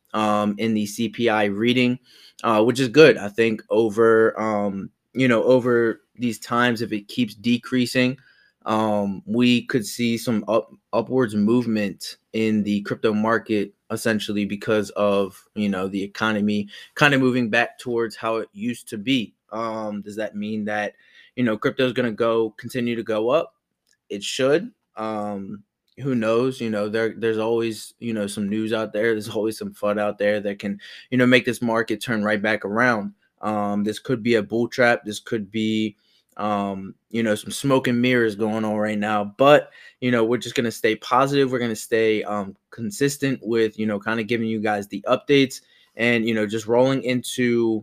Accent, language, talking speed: American, English, 190 wpm